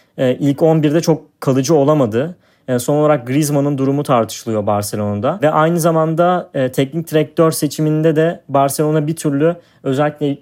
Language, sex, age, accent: Turkish, male, 30-49, native